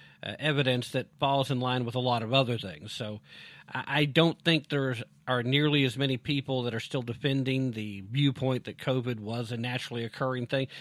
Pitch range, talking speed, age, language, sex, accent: 125-160 Hz, 200 wpm, 40-59, English, male, American